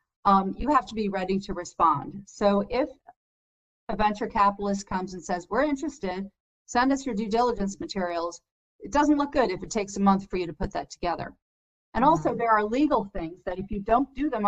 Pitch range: 180-220 Hz